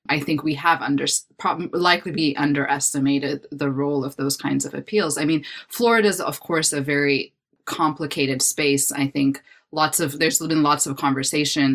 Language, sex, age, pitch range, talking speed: English, female, 20-39, 140-155 Hz, 180 wpm